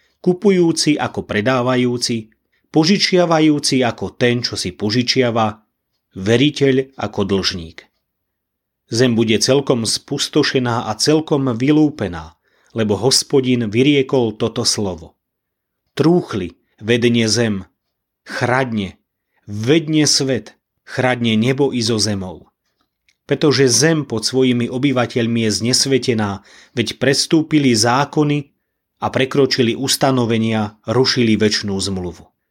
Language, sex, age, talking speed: Slovak, male, 30-49, 95 wpm